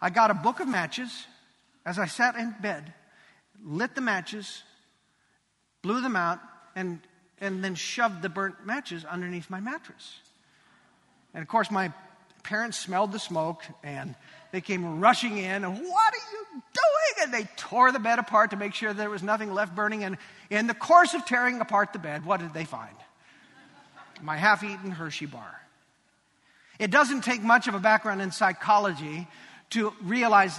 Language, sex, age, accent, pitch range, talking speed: English, male, 50-69, American, 180-230 Hz, 170 wpm